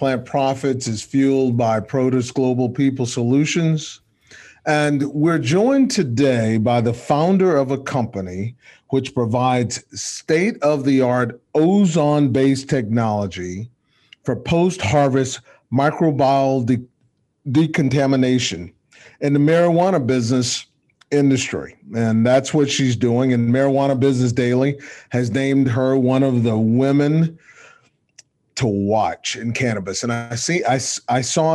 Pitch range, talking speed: 120-145 Hz, 110 wpm